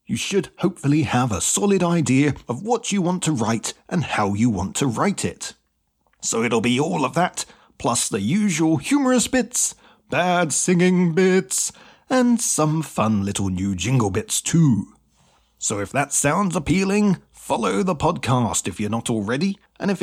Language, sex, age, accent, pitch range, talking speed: English, male, 30-49, British, 125-185 Hz, 170 wpm